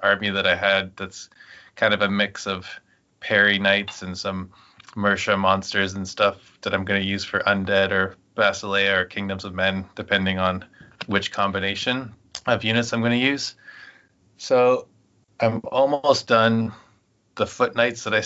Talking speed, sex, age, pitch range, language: 165 wpm, male, 20-39, 100-110 Hz, English